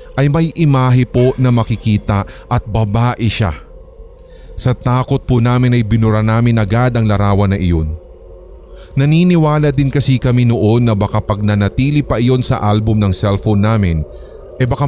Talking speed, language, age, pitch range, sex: 155 wpm, Filipino, 20-39, 95-130 Hz, male